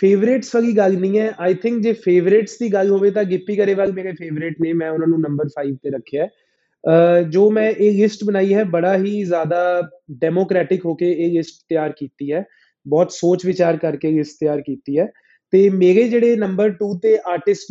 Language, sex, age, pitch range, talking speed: Punjabi, male, 20-39, 175-205 Hz, 205 wpm